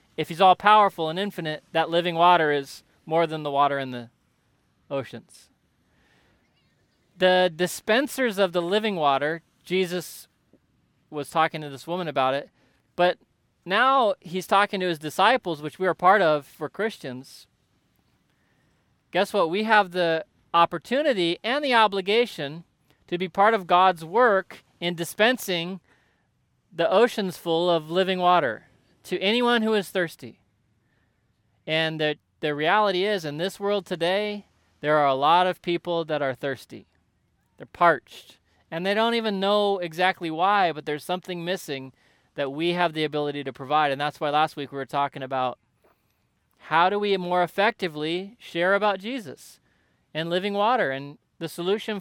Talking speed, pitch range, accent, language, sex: 155 wpm, 150-195 Hz, American, English, male